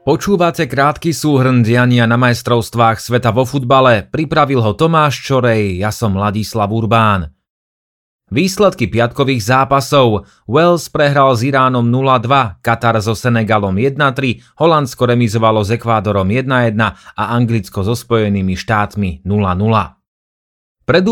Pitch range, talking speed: 110-135 Hz, 115 wpm